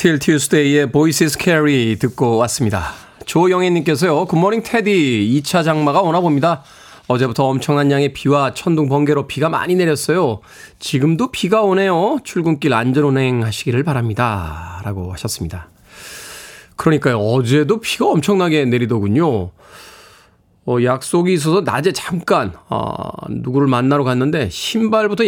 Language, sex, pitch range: Korean, male, 120-170 Hz